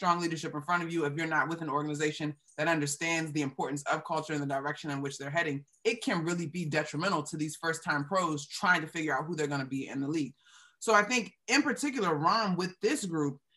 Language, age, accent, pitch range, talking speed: English, 20-39, American, 150-195 Hz, 240 wpm